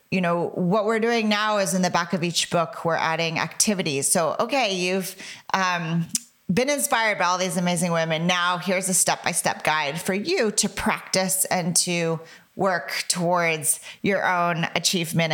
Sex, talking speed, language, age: female, 170 wpm, English, 40-59